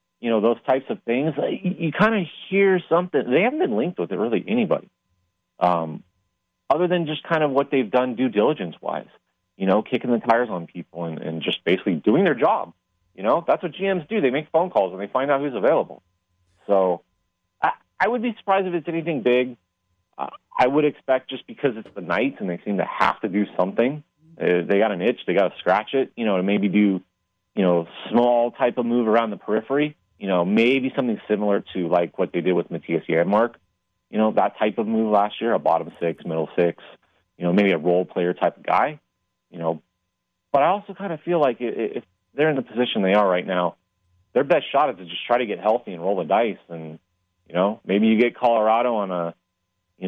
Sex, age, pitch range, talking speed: male, 30-49, 95-130 Hz, 225 wpm